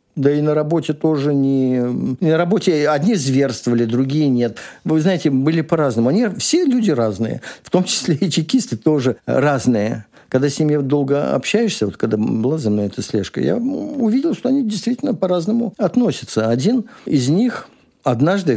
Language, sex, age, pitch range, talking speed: Russian, male, 50-69, 125-190 Hz, 160 wpm